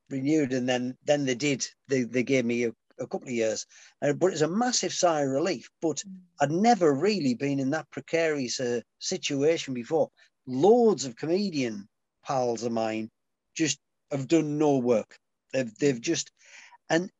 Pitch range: 140-190 Hz